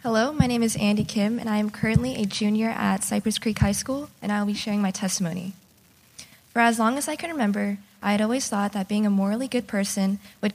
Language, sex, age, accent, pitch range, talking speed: English, female, 20-39, American, 195-220 Hz, 235 wpm